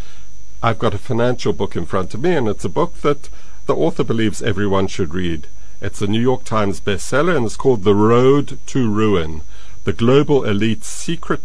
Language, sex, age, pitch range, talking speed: English, male, 50-69, 90-115 Hz, 195 wpm